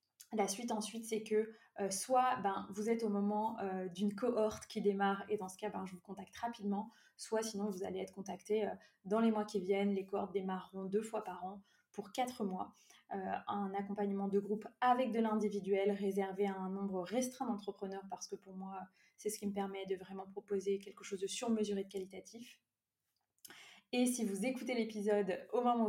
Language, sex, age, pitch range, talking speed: French, female, 20-39, 195-220 Hz, 200 wpm